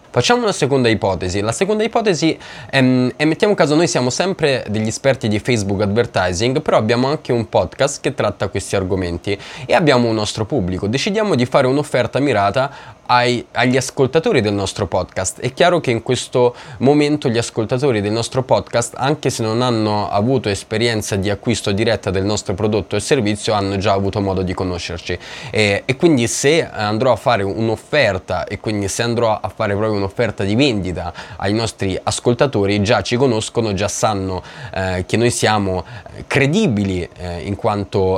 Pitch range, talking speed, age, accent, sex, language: 95-125 Hz, 170 wpm, 20-39, native, male, Italian